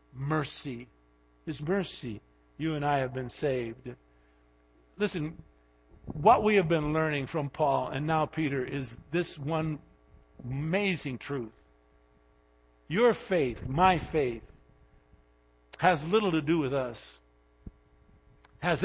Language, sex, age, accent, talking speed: English, male, 50-69, American, 115 wpm